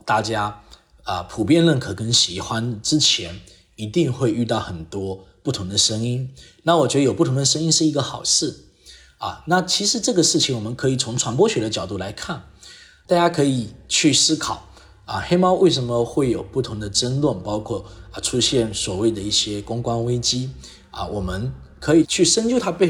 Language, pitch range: Chinese, 110-155 Hz